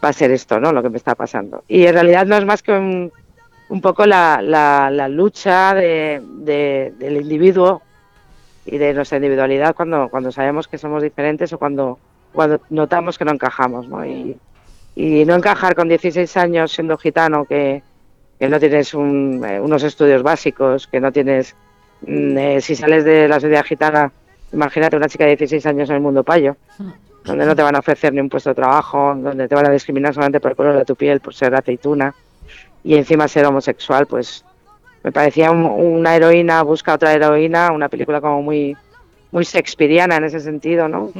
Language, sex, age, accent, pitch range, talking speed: Spanish, female, 40-59, Spanish, 140-165 Hz, 195 wpm